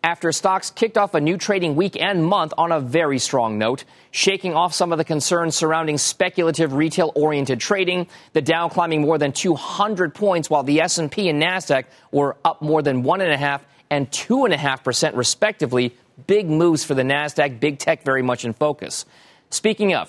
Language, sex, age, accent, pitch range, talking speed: English, male, 40-59, American, 140-180 Hz, 195 wpm